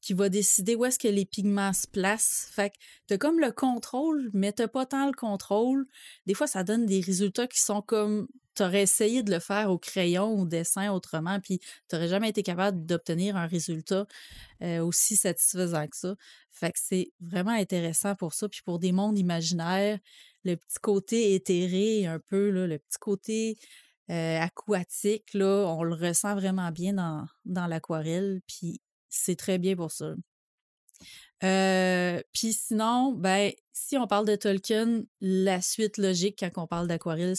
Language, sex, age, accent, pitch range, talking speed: French, female, 30-49, Canadian, 180-205 Hz, 175 wpm